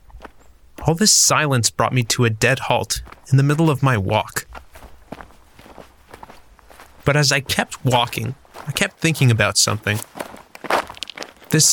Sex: male